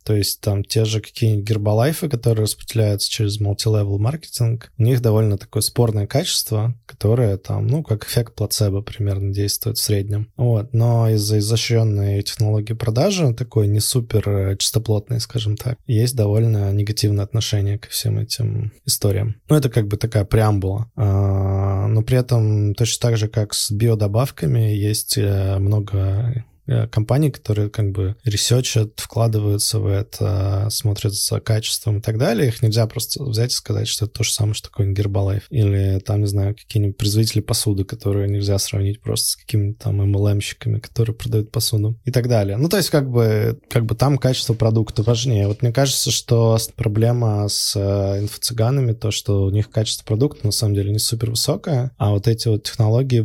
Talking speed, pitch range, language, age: 170 wpm, 105-115 Hz, Russian, 20-39